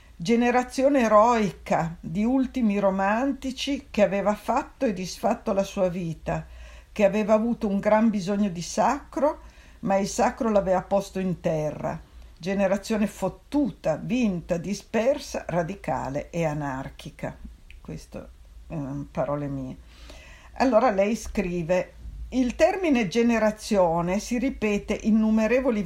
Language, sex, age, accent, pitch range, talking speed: Italian, female, 50-69, native, 155-225 Hz, 115 wpm